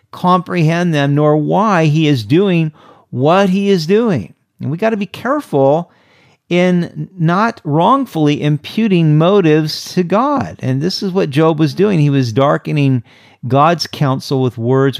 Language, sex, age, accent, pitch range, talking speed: English, male, 50-69, American, 125-170 Hz, 150 wpm